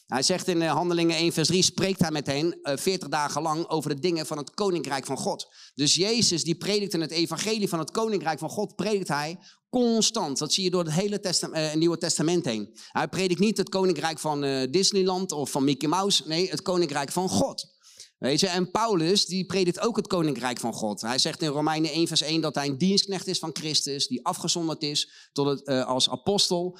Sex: male